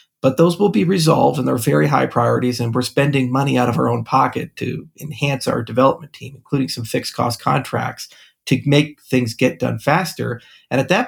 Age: 40-59